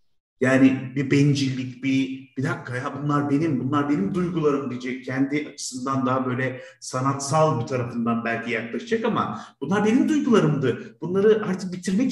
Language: Turkish